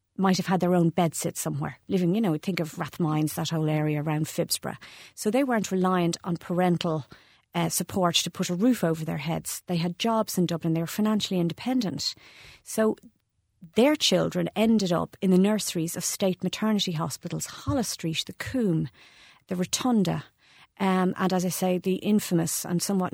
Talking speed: 185 wpm